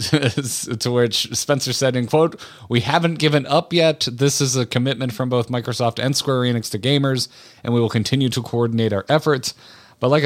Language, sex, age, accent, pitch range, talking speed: English, male, 30-49, American, 95-125 Hz, 195 wpm